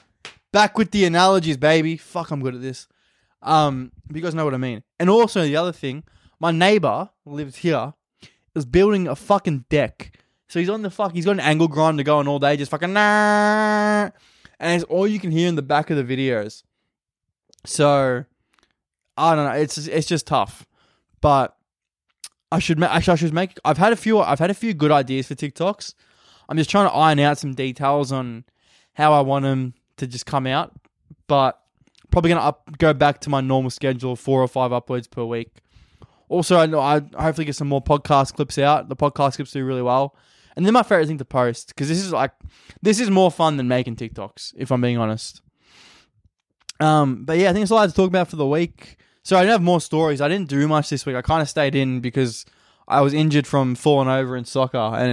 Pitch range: 130-170 Hz